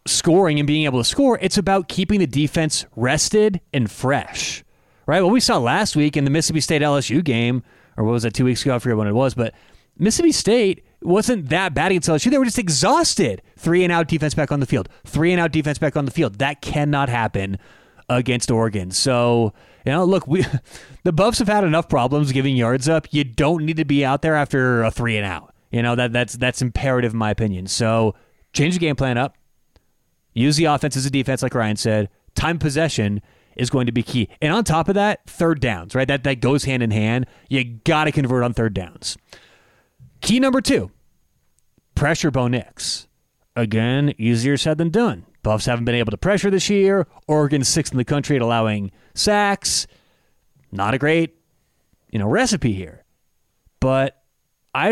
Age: 30-49